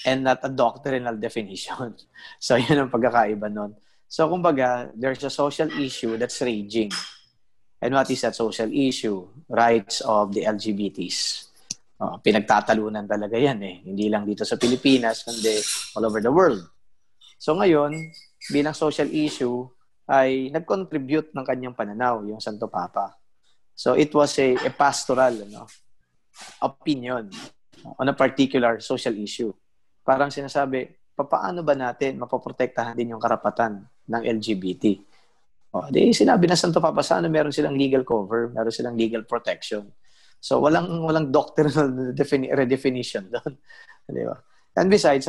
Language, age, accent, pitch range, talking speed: English, 20-39, Filipino, 110-140 Hz, 135 wpm